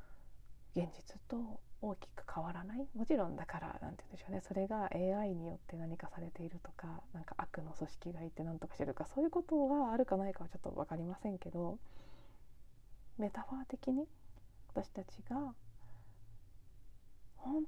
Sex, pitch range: female, 170-230 Hz